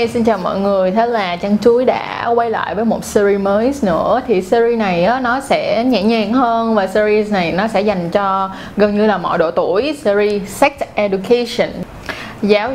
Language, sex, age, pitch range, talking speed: Vietnamese, female, 20-39, 195-240 Hz, 200 wpm